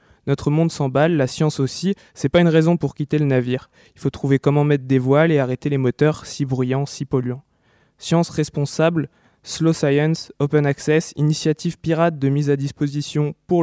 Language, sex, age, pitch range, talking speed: French, male, 20-39, 140-160 Hz, 185 wpm